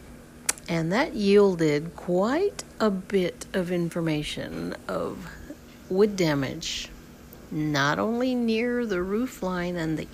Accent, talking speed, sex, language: American, 110 wpm, female, English